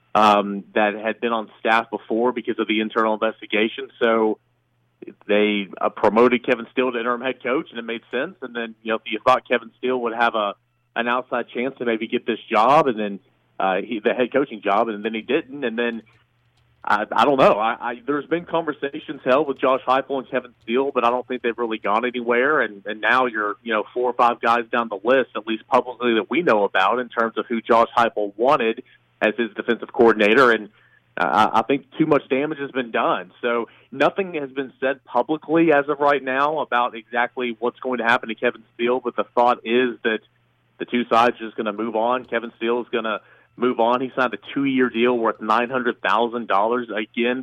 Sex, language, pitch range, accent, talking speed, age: male, English, 110-130 Hz, American, 220 wpm, 40-59